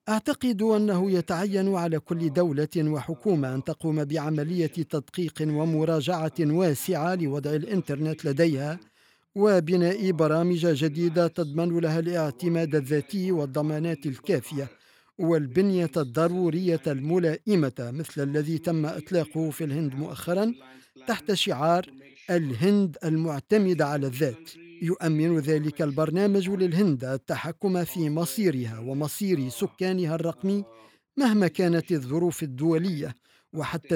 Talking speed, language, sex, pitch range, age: 100 wpm, Arabic, male, 150-180 Hz, 50-69